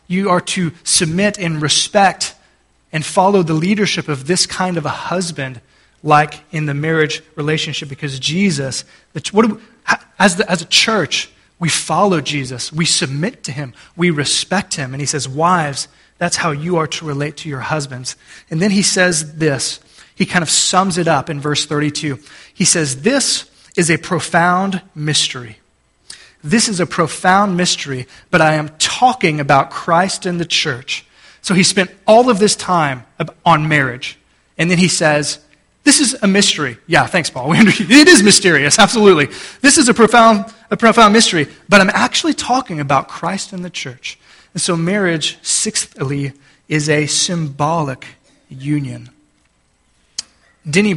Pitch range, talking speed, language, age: 150-185 Hz, 165 wpm, English, 20-39